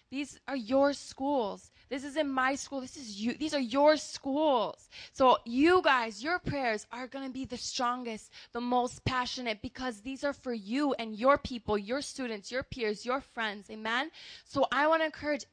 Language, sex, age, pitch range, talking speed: English, female, 20-39, 225-265 Hz, 190 wpm